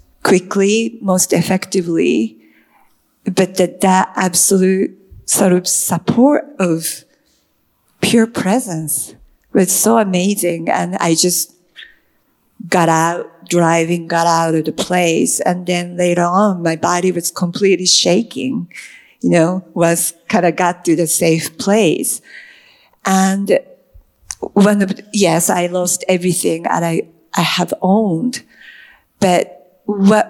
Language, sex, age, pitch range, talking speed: Gujarati, female, 50-69, 180-215 Hz, 125 wpm